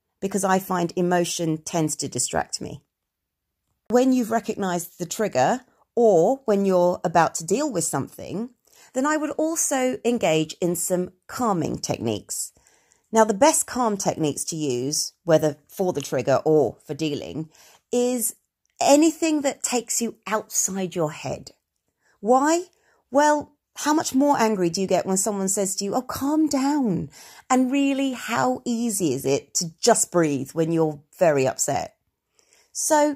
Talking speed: 150 wpm